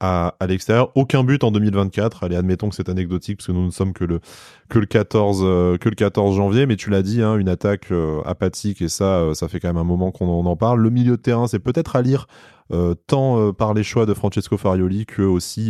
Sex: male